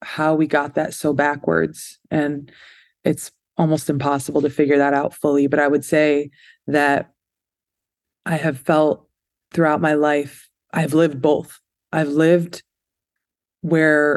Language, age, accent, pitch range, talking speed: English, 20-39, American, 140-160 Hz, 135 wpm